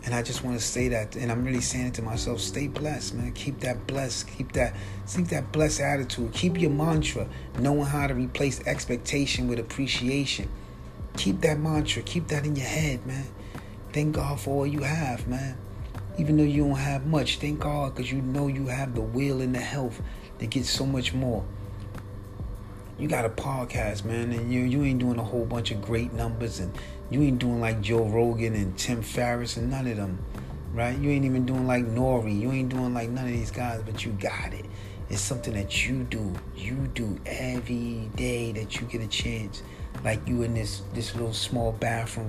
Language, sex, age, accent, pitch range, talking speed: English, male, 30-49, American, 105-135 Hz, 205 wpm